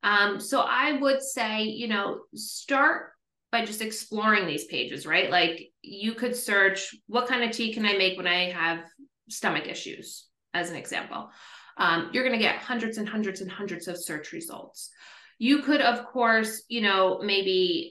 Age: 30-49